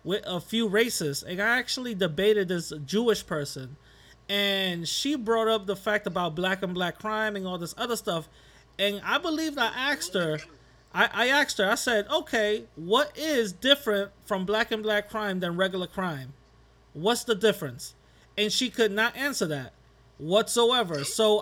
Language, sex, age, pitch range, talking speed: English, male, 30-49, 180-235 Hz, 175 wpm